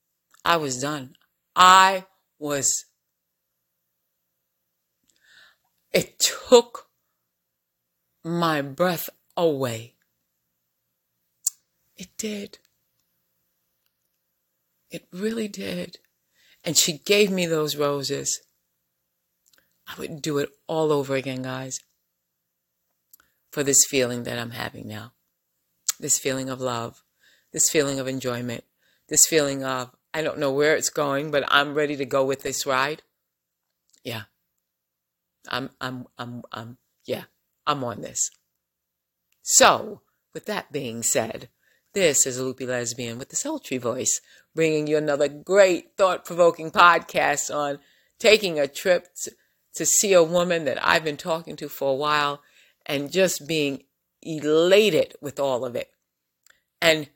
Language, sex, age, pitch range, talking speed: English, female, 30-49, 130-170 Hz, 120 wpm